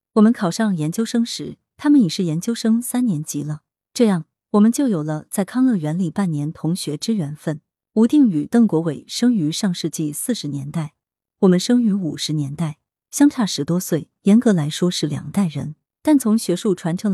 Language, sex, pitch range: Chinese, female, 160-225 Hz